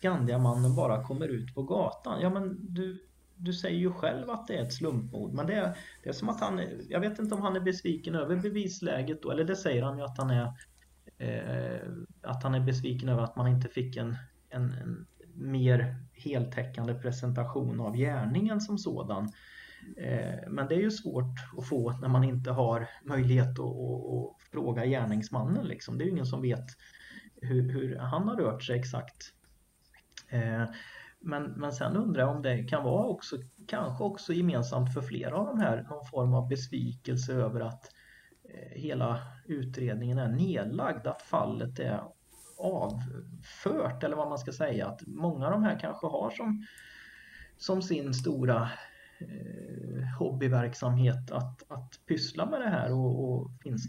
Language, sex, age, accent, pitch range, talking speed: Swedish, male, 30-49, native, 125-170 Hz, 175 wpm